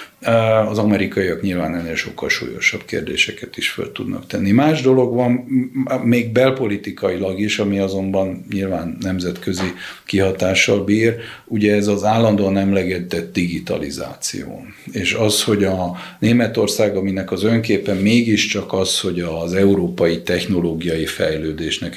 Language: Hungarian